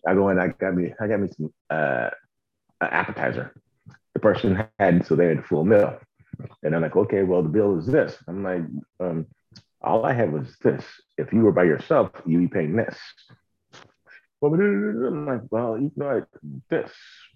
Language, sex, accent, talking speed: English, male, American, 185 wpm